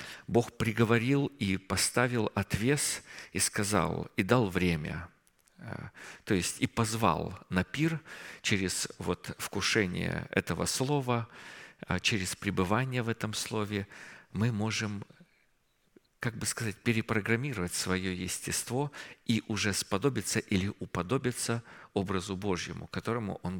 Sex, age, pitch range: male, 50-69, 95-115 Hz